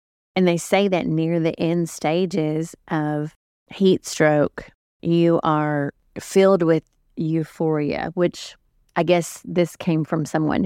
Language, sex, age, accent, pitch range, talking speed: English, female, 30-49, American, 145-165 Hz, 130 wpm